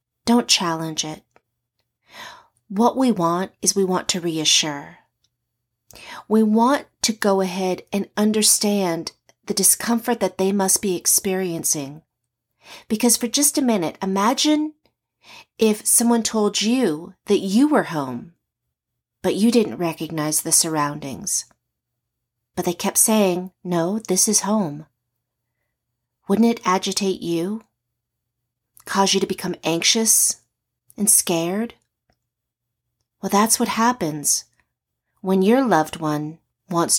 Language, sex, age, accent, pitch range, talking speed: English, female, 40-59, American, 145-215 Hz, 120 wpm